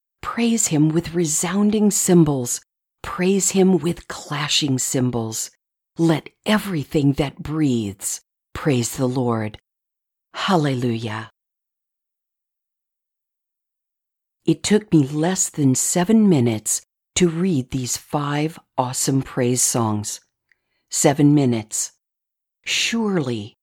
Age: 50-69